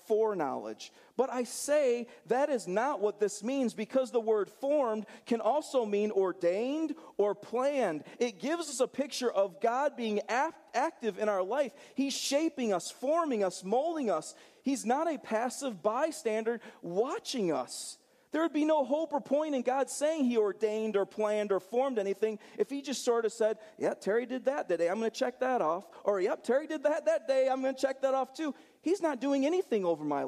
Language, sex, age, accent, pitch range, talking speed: English, male, 40-59, American, 185-270 Hz, 200 wpm